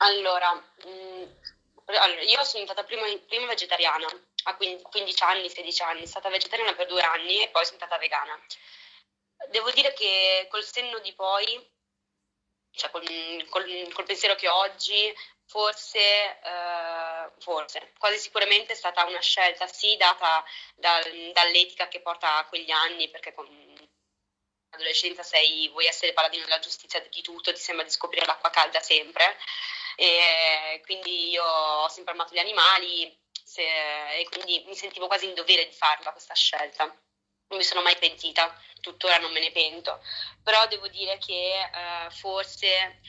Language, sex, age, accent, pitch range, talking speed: Italian, female, 20-39, native, 165-195 Hz, 155 wpm